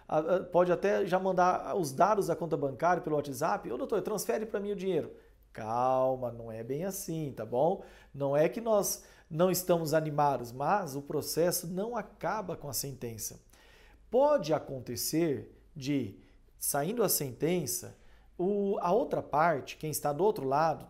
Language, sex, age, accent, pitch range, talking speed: Portuguese, male, 40-59, Brazilian, 140-190 Hz, 155 wpm